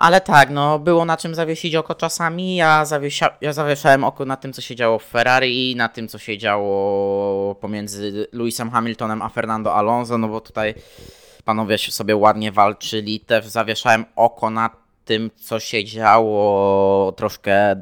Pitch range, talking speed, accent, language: 105-115 Hz, 160 wpm, native, Polish